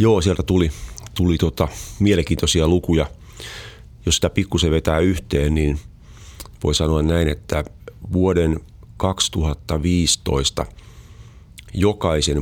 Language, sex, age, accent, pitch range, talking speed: Finnish, male, 40-59, native, 75-95 Hz, 95 wpm